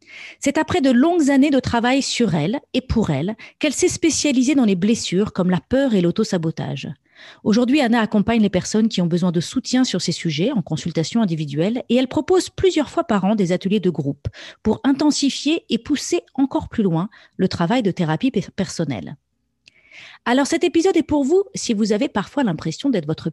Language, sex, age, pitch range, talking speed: French, female, 40-59, 180-275 Hz, 195 wpm